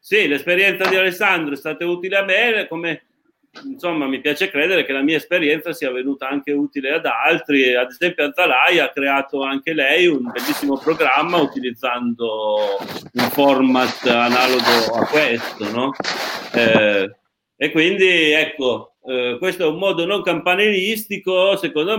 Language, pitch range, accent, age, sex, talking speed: Italian, 135-180 Hz, native, 40-59, male, 145 wpm